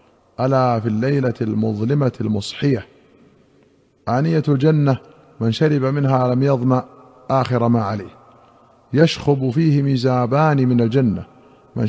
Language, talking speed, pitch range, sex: Arabic, 105 wpm, 120-140 Hz, male